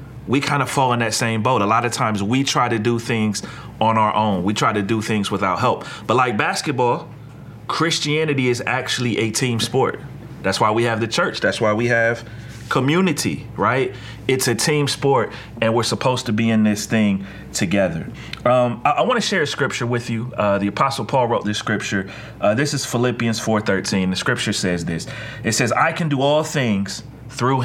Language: English